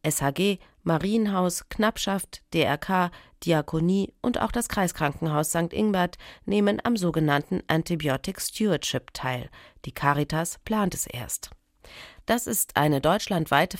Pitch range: 140-195 Hz